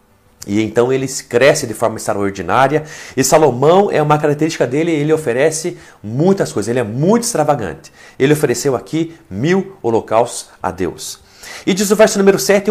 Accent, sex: Brazilian, male